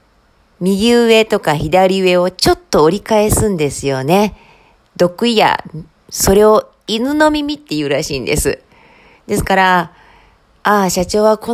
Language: Japanese